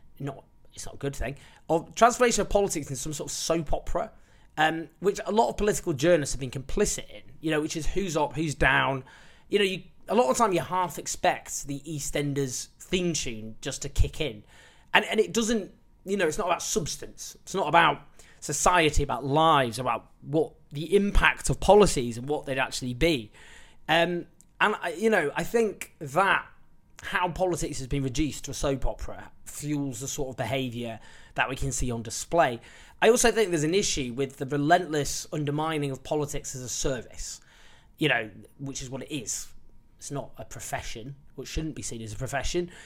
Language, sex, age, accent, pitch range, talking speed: English, male, 20-39, British, 130-175 Hz, 200 wpm